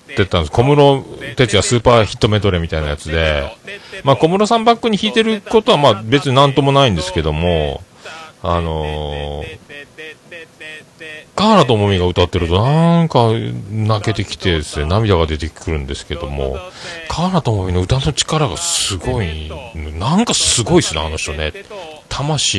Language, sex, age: Japanese, male, 40-59